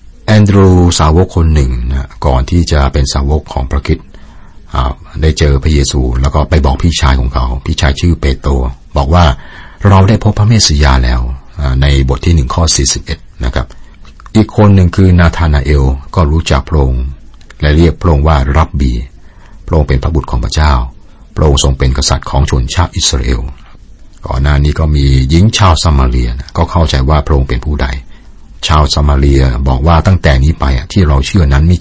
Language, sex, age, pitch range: Thai, male, 60-79, 65-85 Hz